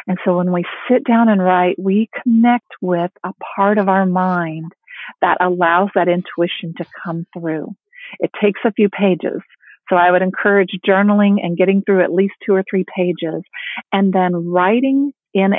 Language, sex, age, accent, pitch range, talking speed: English, female, 40-59, American, 180-210 Hz, 175 wpm